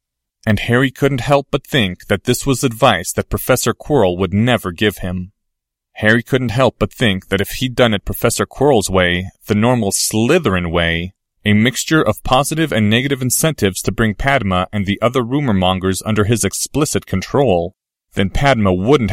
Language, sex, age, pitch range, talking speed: English, male, 30-49, 95-125 Hz, 175 wpm